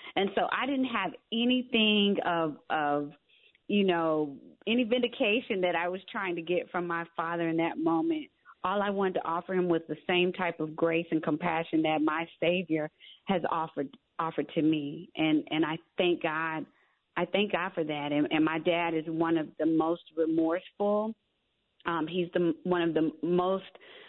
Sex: female